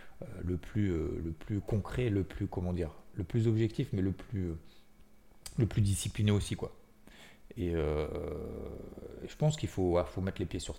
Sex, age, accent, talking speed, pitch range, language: male, 40-59, French, 180 wpm, 90-110 Hz, French